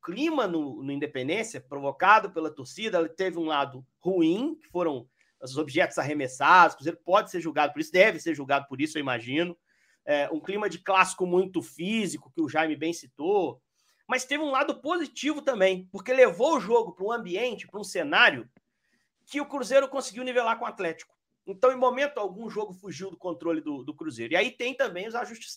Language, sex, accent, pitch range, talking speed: Portuguese, male, Brazilian, 170-235 Hz, 195 wpm